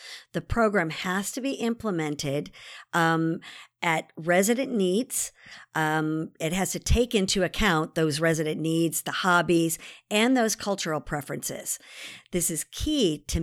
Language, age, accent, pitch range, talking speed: English, 50-69, American, 165-215 Hz, 135 wpm